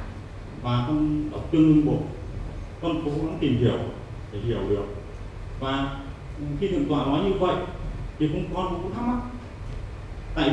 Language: Vietnamese